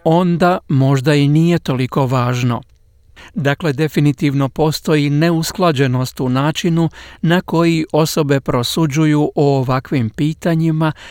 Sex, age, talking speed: male, 50-69, 105 wpm